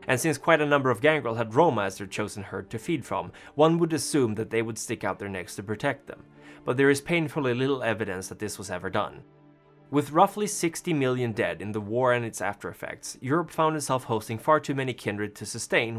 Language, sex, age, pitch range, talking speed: English, male, 20-39, 105-140 Hz, 230 wpm